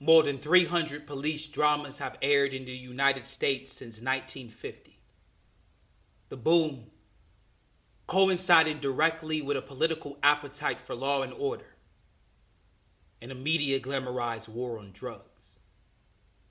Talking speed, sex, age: 115 wpm, male, 30-49